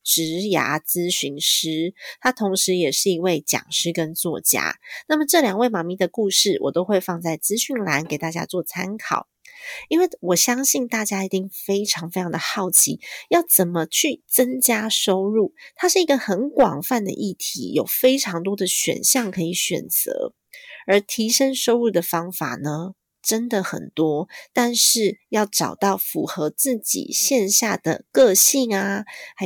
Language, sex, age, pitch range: Chinese, female, 30-49, 175-250 Hz